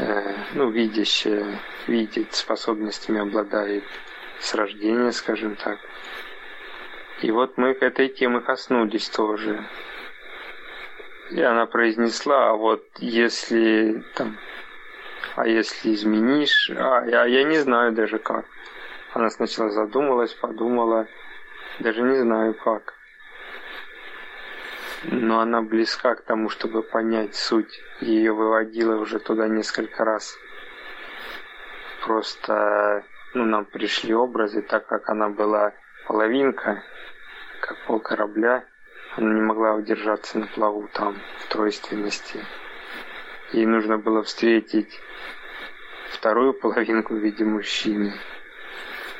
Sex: male